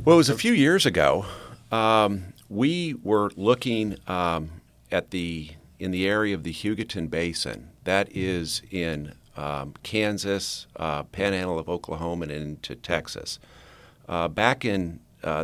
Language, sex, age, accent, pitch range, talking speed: English, male, 50-69, American, 85-105 Hz, 150 wpm